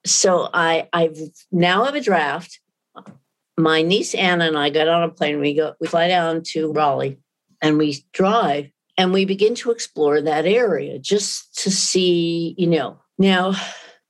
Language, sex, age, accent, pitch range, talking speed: English, female, 50-69, American, 155-195 Hz, 165 wpm